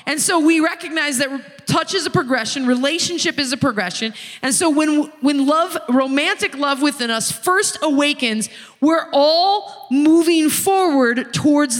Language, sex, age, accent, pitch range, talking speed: English, female, 20-39, American, 245-325 Hz, 150 wpm